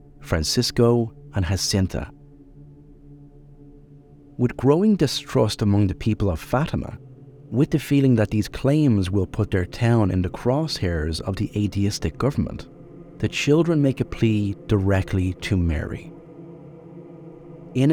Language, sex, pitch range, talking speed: English, male, 100-155 Hz, 125 wpm